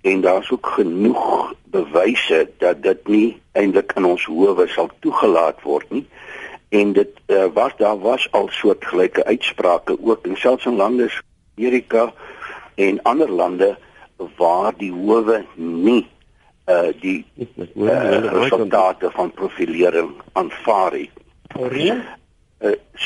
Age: 60-79